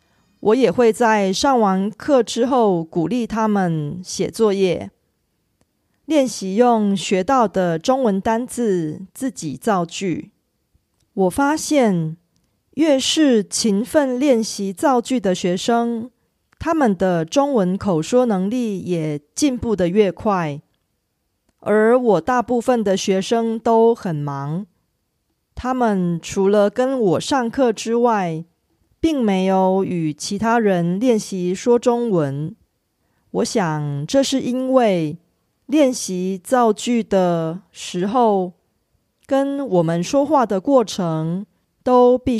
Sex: female